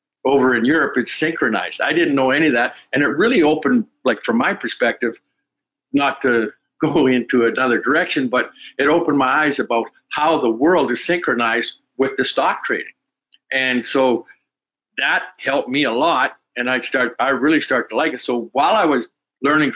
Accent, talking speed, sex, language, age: American, 180 wpm, male, English, 50-69